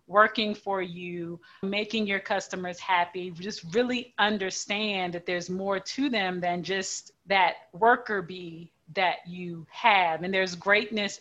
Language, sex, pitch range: English, female, 180-210 Hz